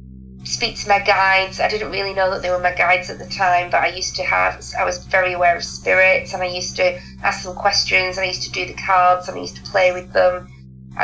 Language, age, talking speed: English, 30-49, 260 wpm